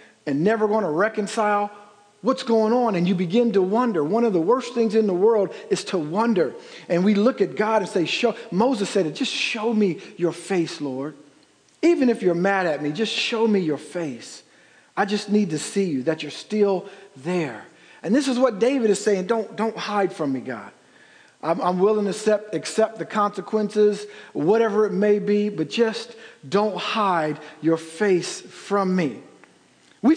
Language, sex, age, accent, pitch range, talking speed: English, male, 50-69, American, 195-240 Hz, 190 wpm